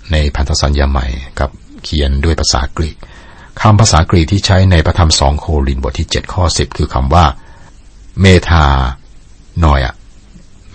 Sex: male